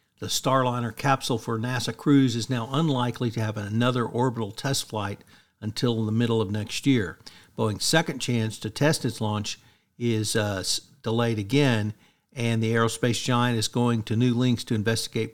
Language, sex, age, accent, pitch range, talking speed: English, male, 50-69, American, 110-125 Hz, 170 wpm